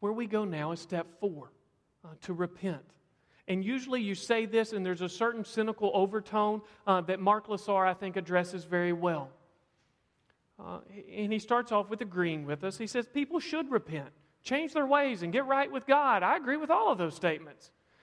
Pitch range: 160-220 Hz